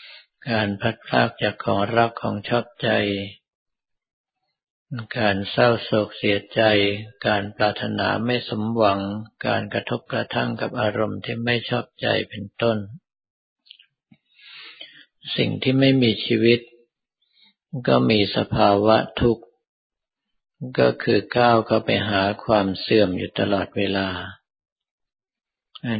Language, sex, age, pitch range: Thai, male, 60-79, 100-120 Hz